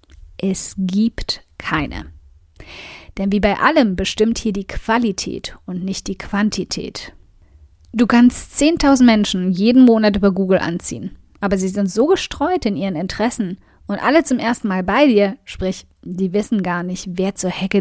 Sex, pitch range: female, 185-235 Hz